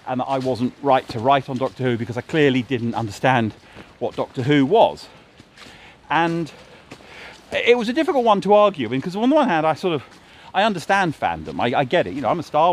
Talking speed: 220 wpm